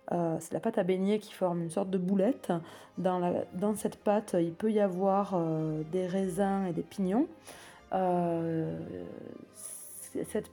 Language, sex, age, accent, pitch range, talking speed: French, female, 20-39, French, 175-210 Hz, 165 wpm